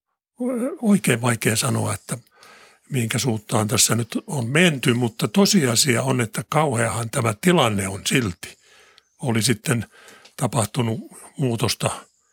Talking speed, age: 110 wpm, 60-79